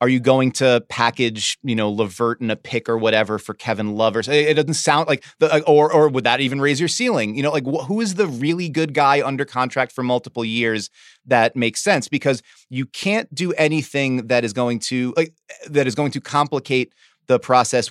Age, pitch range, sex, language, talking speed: 30-49, 120-145 Hz, male, English, 215 wpm